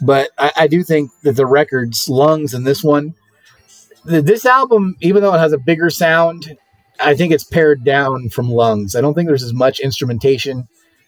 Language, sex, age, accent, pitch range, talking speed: English, male, 30-49, American, 125-165 Hz, 190 wpm